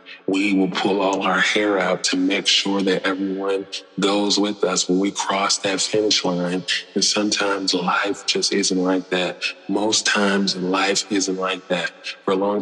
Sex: male